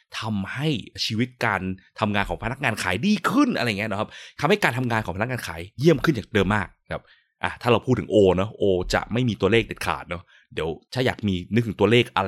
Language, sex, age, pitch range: Thai, male, 20-39, 95-135 Hz